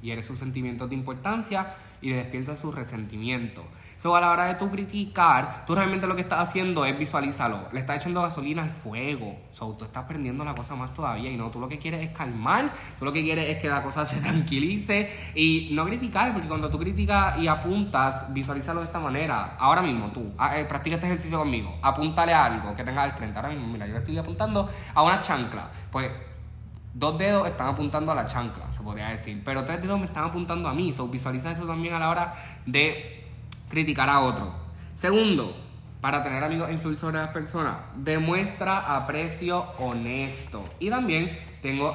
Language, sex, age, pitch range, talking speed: Spanish, male, 10-29, 120-165 Hz, 195 wpm